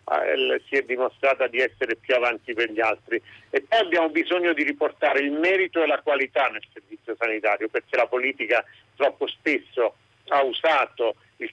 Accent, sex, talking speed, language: native, male, 165 wpm, Italian